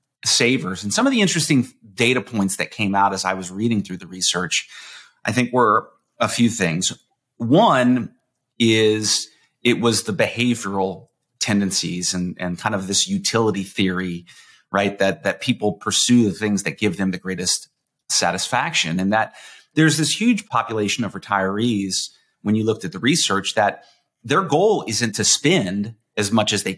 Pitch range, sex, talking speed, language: 100-120 Hz, male, 170 wpm, English